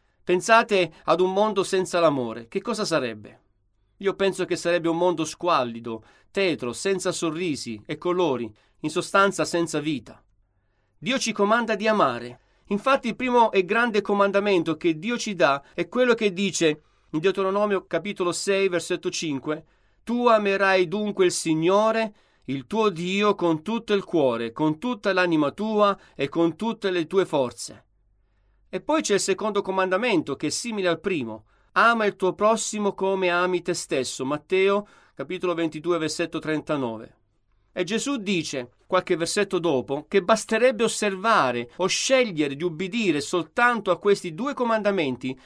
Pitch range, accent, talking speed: 150-200 Hz, native, 150 wpm